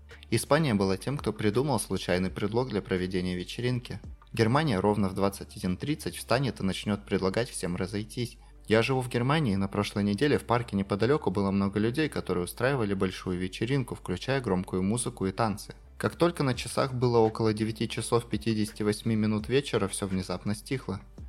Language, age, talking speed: Russian, 20-39, 160 wpm